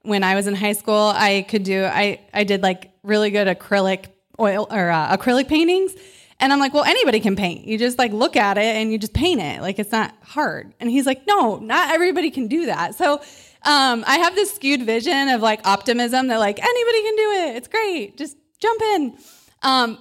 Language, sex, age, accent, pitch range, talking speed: English, female, 20-39, American, 215-265 Hz, 220 wpm